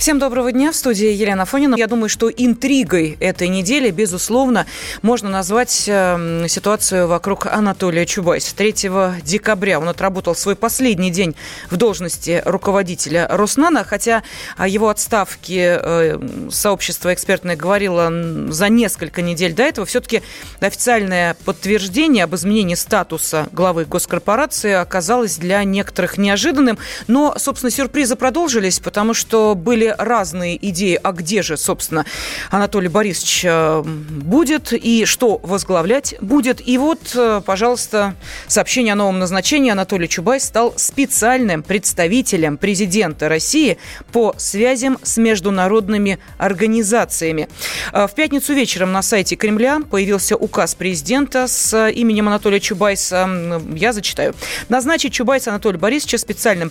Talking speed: 120 wpm